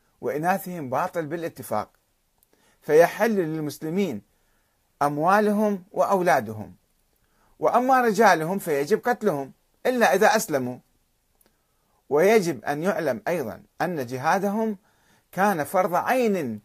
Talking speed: 85 wpm